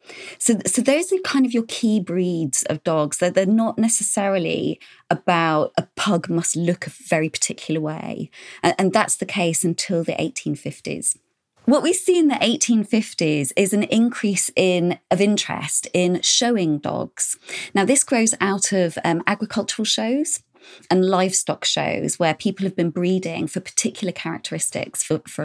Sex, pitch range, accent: female, 170-240 Hz, British